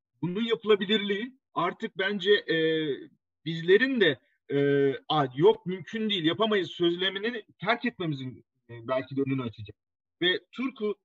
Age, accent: 40-59, native